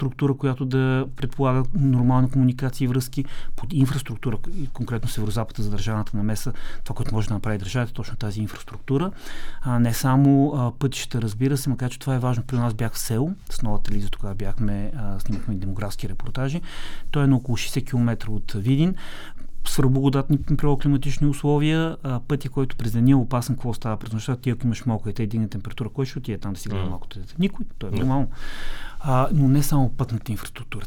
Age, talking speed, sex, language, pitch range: 30-49, 180 wpm, male, Bulgarian, 110-135 Hz